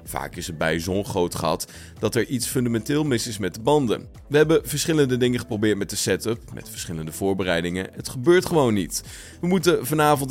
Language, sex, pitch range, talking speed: Dutch, male, 95-145 Hz, 190 wpm